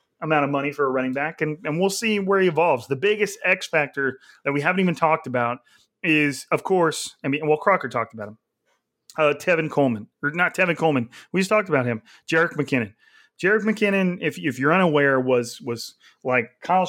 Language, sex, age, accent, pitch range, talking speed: English, male, 30-49, American, 130-160 Hz, 205 wpm